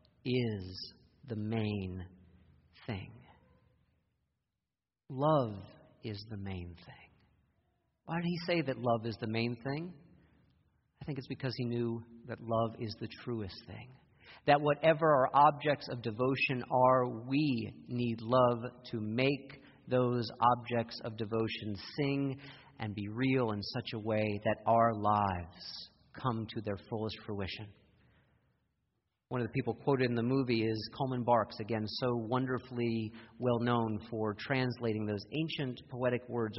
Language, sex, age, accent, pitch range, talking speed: English, male, 40-59, American, 110-130 Hz, 140 wpm